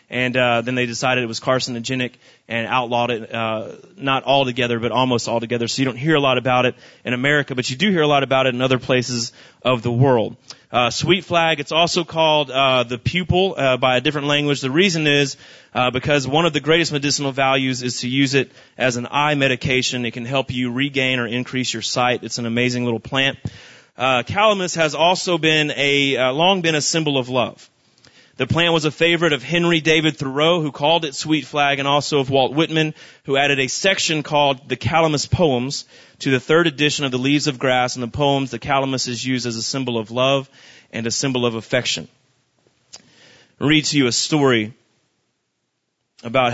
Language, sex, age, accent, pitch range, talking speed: English, male, 30-49, American, 125-150 Hz, 210 wpm